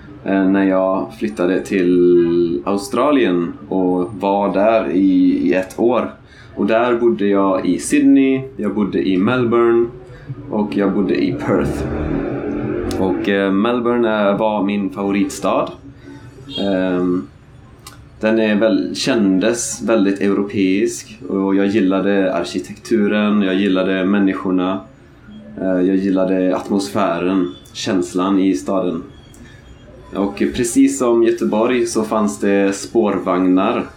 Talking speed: 100 wpm